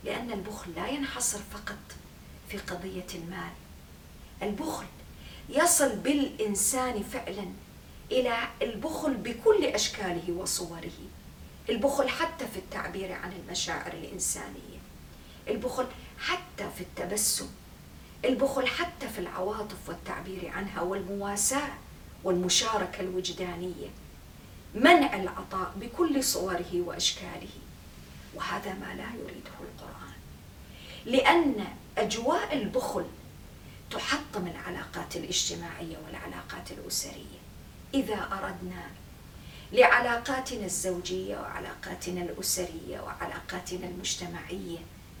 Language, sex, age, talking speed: English, female, 40-59, 80 wpm